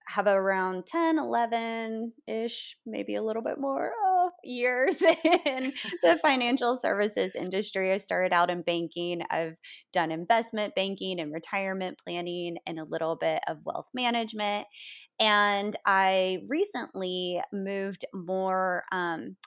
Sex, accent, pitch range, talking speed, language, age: female, American, 165-205 Hz, 125 wpm, English, 20-39